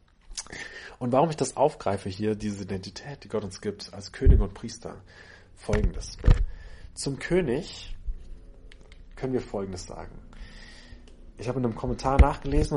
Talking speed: 135 wpm